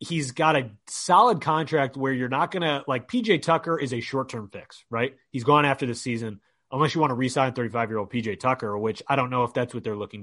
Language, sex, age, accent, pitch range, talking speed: English, male, 30-49, American, 120-150 Hz, 245 wpm